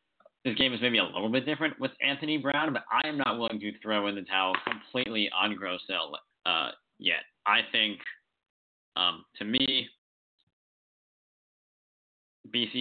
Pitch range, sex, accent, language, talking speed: 95-120 Hz, male, American, English, 150 wpm